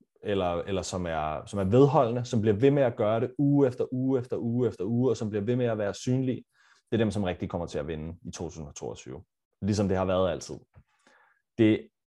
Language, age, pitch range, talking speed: Danish, 30-49, 100-120 Hz, 230 wpm